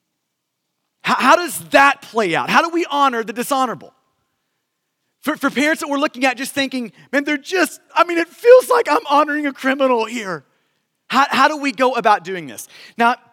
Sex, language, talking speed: male, English, 190 wpm